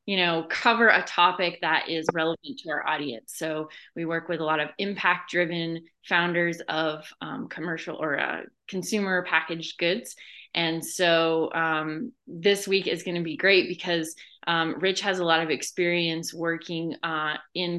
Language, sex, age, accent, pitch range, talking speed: English, female, 20-39, American, 160-185 Hz, 170 wpm